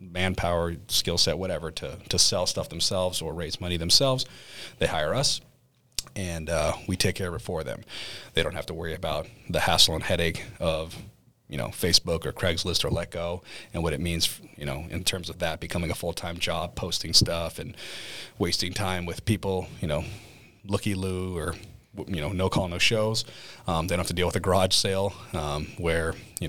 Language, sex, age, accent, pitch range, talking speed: English, male, 30-49, American, 85-105 Hz, 200 wpm